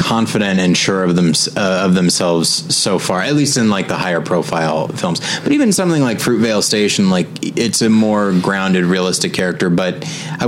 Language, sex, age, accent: English, male, 30-49, American